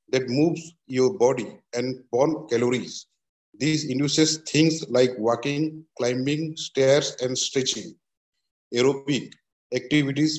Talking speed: 105 wpm